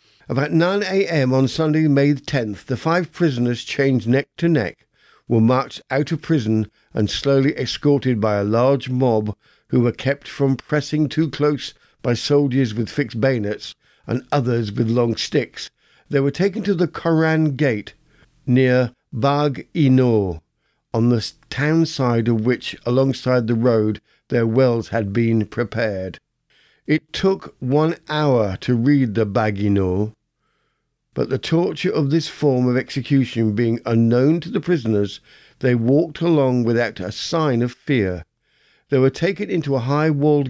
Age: 60-79